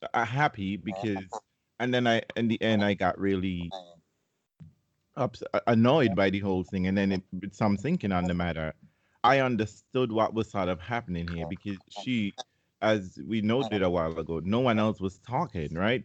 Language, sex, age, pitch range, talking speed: English, male, 30-49, 90-115 Hz, 175 wpm